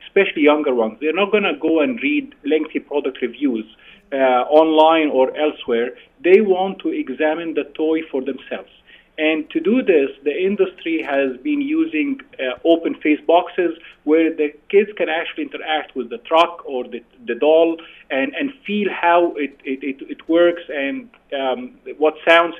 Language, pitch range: English, 150-215 Hz